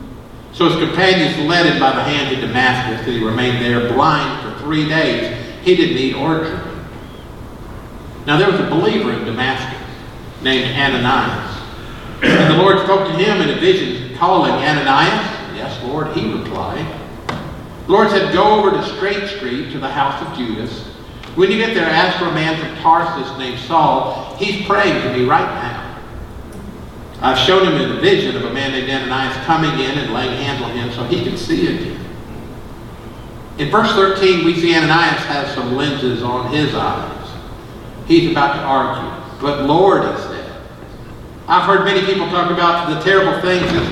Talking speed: 175 wpm